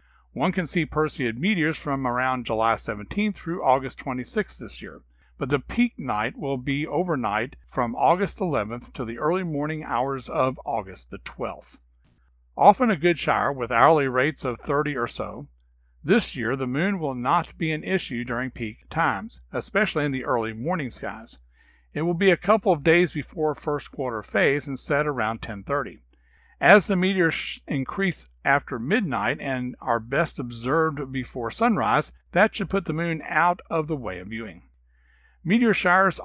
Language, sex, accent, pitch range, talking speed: English, male, American, 115-160 Hz, 170 wpm